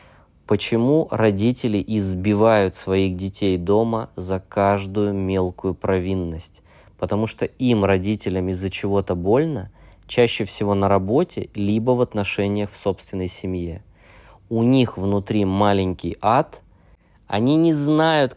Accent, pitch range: native, 95-110 Hz